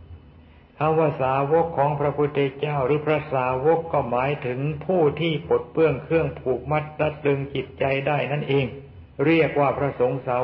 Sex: male